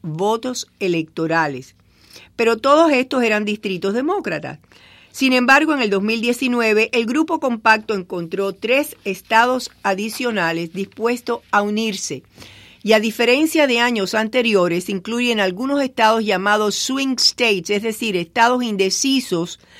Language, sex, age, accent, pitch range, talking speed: English, female, 50-69, American, 180-240 Hz, 120 wpm